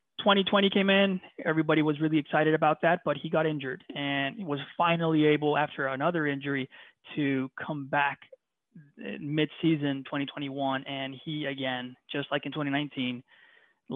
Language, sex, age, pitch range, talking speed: English, male, 20-39, 135-160 Hz, 140 wpm